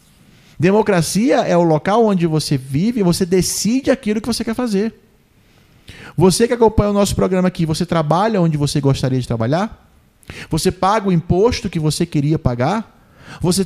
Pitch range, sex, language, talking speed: 160-210 Hz, male, Portuguese, 165 wpm